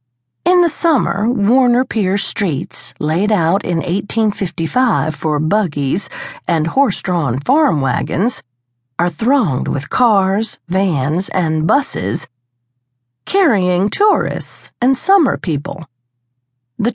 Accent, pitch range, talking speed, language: American, 135-215 Hz, 105 wpm, English